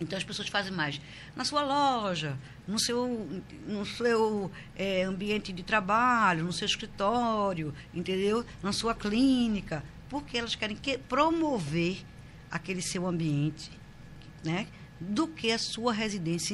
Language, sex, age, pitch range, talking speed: Portuguese, female, 60-79, 160-225 Hz, 135 wpm